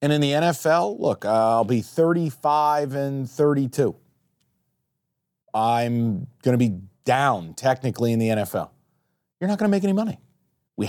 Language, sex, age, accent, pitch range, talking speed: English, male, 40-59, American, 110-140 Hz, 150 wpm